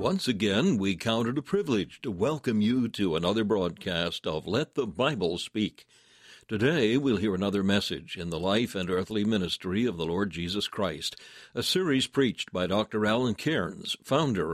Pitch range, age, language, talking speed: 90-115 Hz, 60-79, English, 175 wpm